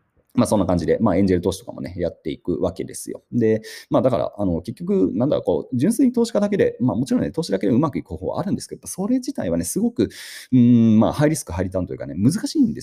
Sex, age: male, 30-49